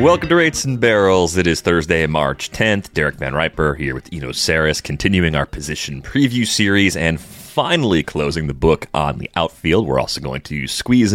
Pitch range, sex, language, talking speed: 75-105 Hz, male, English, 190 wpm